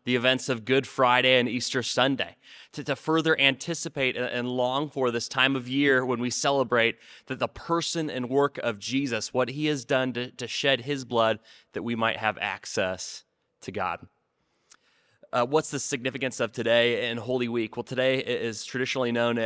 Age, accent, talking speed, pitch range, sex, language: 20-39, American, 180 wpm, 115-135 Hz, male, English